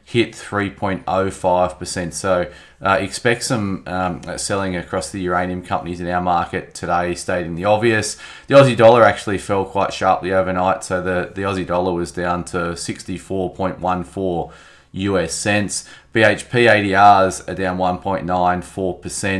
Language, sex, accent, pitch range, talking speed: English, male, Australian, 90-95 Hz, 130 wpm